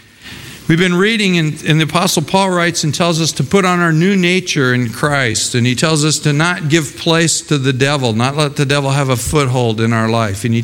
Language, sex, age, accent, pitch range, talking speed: English, male, 50-69, American, 125-155 Hz, 245 wpm